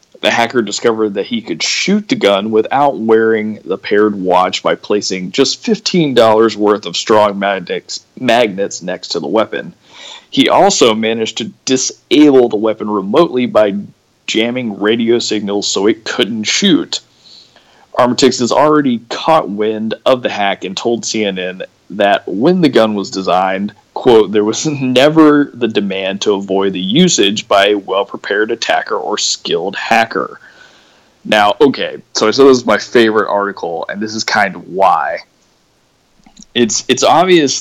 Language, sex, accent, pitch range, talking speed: English, male, American, 100-135 Hz, 155 wpm